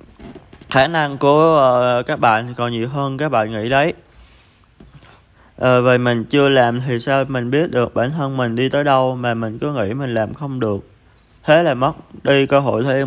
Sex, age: male, 20-39